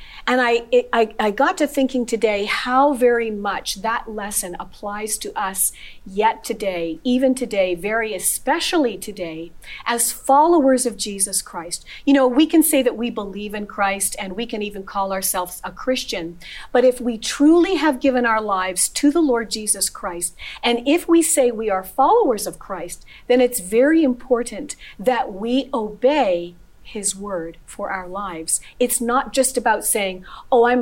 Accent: American